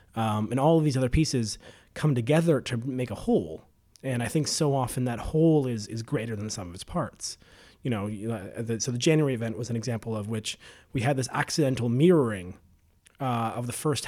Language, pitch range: English, 105-135 Hz